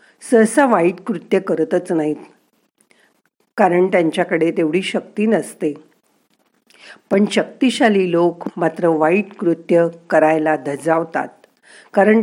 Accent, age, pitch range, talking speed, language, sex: native, 50-69, 165-225 Hz, 95 wpm, Marathi, female